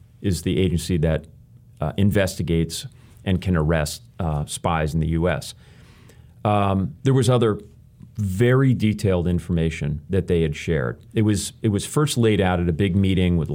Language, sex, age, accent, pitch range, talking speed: English, male, 40-59, American, 90-120 Hz, 165 wpm